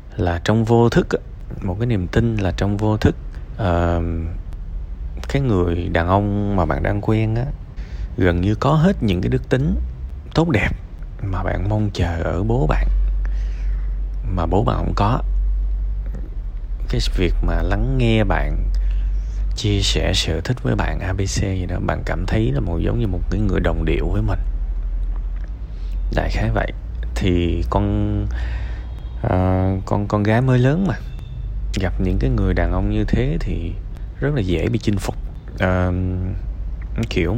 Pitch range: 85-110 Hz